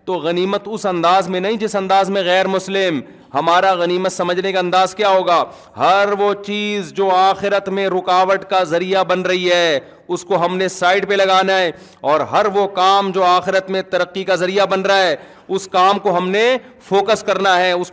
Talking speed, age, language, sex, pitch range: 200 wpm, 40-59, Urdu, male, 140-195 Hz